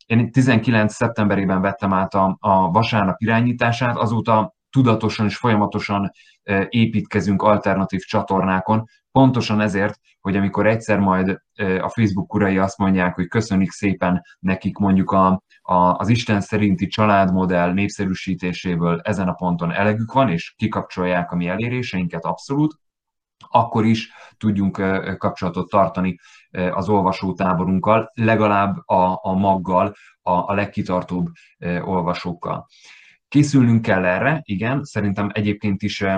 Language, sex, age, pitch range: Hungarian, male, 30-49, 95-105 Hz